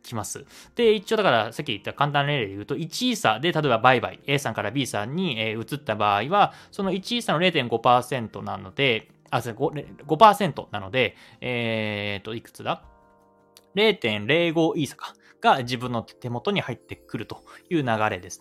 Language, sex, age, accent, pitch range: Japanese, male, 20-39, native, 115-170 Hz